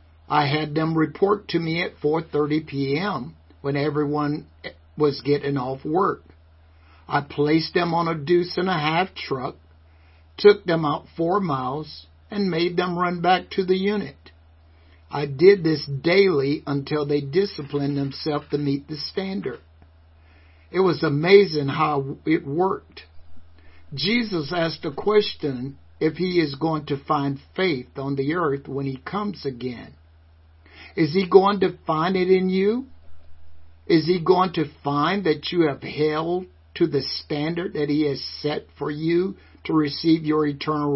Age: 60-79